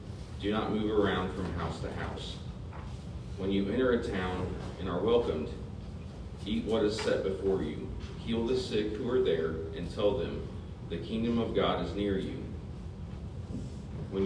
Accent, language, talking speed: American, English, 165 wpm